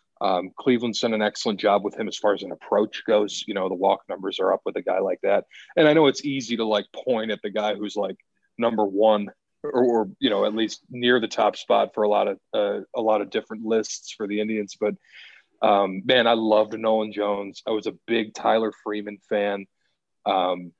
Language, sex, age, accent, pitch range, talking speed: English, male, 30-49, American, 105-120 Hz, 230 wpm